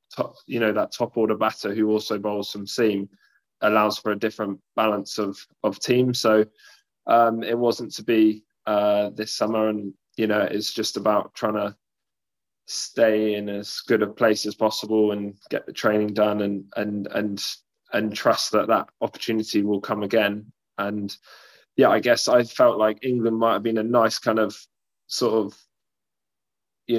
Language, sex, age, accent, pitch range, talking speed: English, male, 20-39, British, 105-115 Hz, 175 wpm